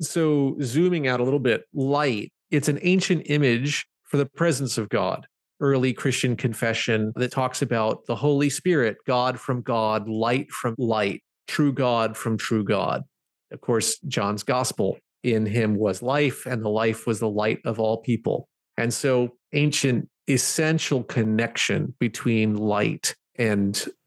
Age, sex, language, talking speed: 40-59, male, English, 150 wpm